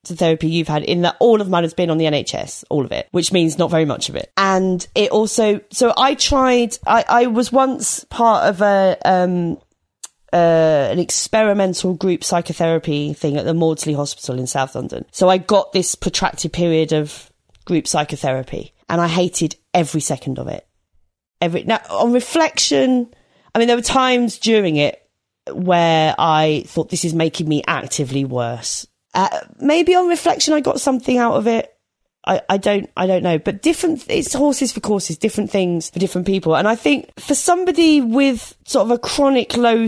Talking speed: 185 wpm